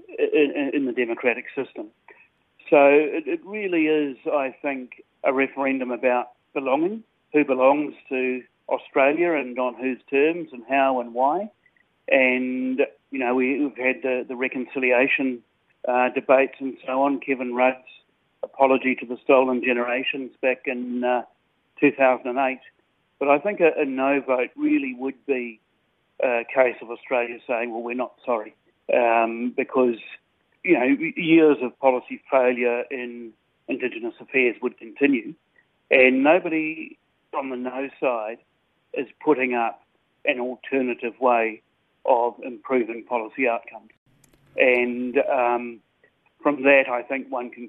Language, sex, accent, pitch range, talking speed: English, male, Australian, 120-140 Hz, 130 wpm